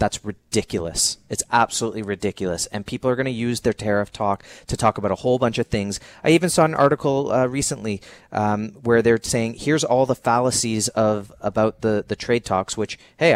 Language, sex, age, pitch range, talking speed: English, male, 30-49, 100-120 Hz, 200 wpm